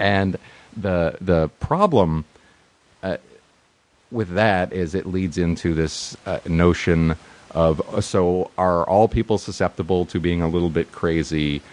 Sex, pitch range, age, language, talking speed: male, 80-100 Hz, 30-49, English, 135 wpm